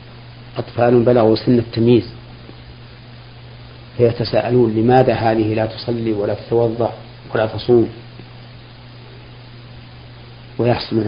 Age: 50-69